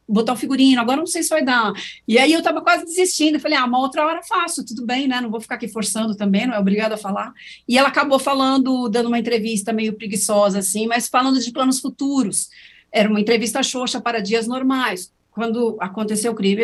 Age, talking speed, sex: 40-59, 220 wpm, female